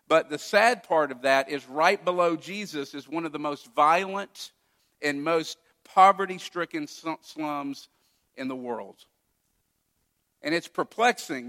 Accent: American